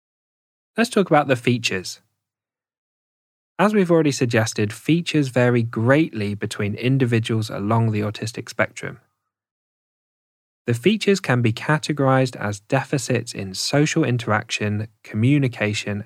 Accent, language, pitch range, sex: British, English, 105-130 Hz, male